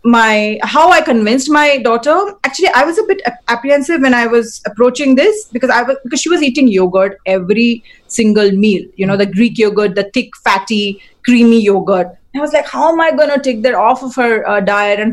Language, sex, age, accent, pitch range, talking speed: English, female, 30-49, Indian, 200-260 Hz, 220 wpm